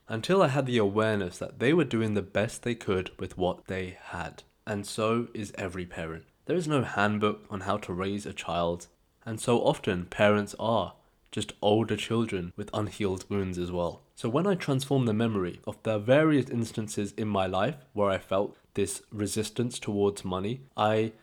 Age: 20-39